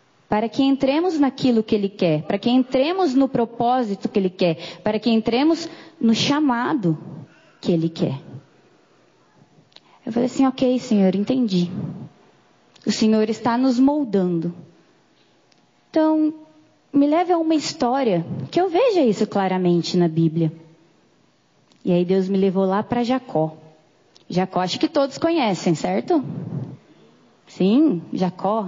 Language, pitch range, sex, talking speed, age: Portuguese, 170-235 Hz, female, 130 wpm, 20-39